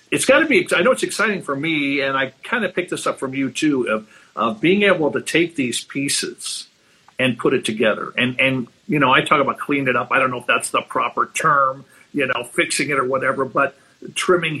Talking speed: 240 wpm